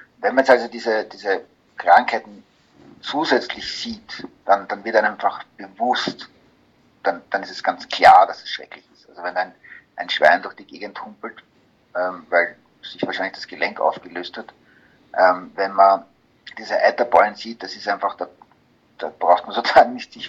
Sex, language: male, German